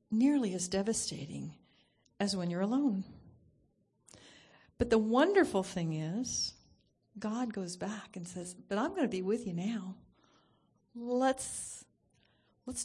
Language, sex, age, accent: English, female, 40-59, American